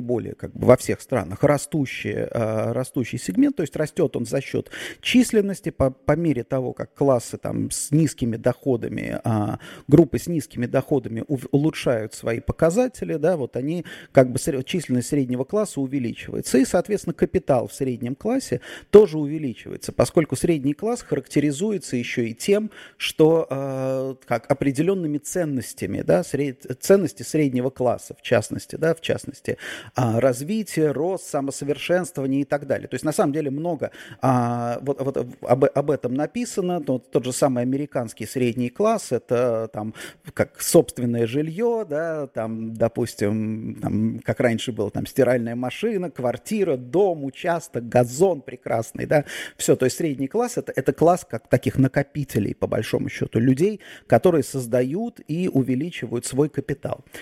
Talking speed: 130 wpm